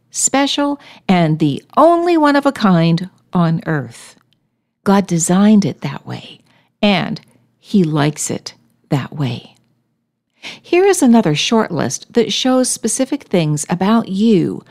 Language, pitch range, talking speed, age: English, 160-235 Hz, 130 wpm, 60-79